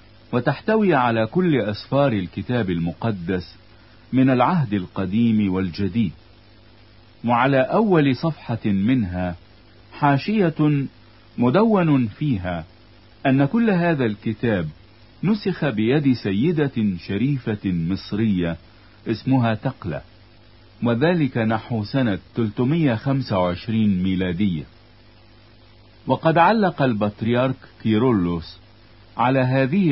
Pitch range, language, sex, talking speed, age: 105-130 Hz, Italian, male, 80 wpm, 50-69